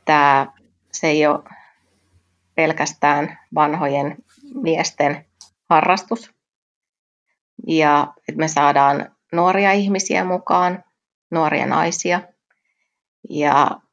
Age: 30-49